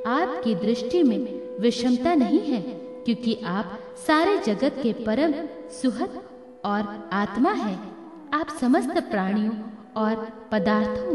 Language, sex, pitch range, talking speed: Hindi, female, 205-275 Hz, 115 wpm